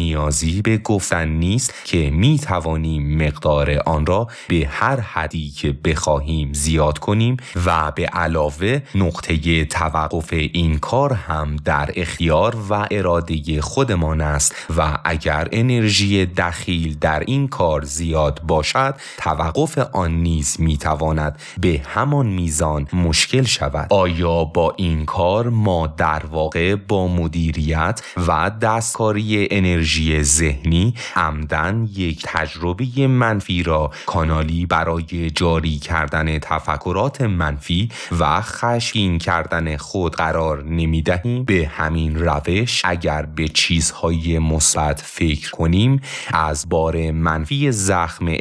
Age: 30-49